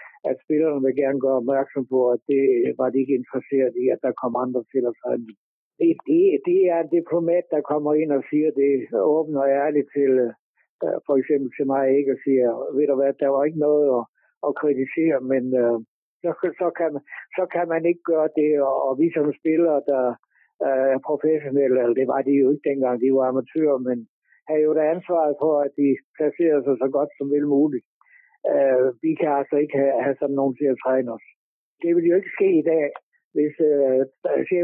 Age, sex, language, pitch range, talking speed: 60-79, male, Danish, 135-155 Hz, 205 wpm